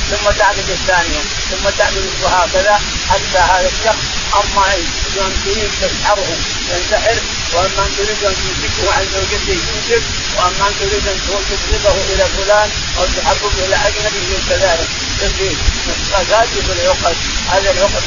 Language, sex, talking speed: Arabic, male, 145 wpm